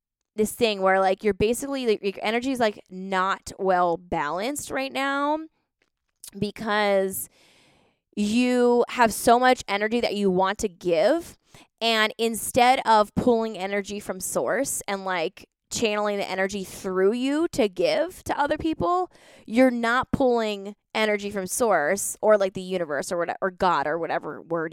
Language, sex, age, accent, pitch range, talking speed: English, female, 20-39, American, 190-245 Hz, 155 wpm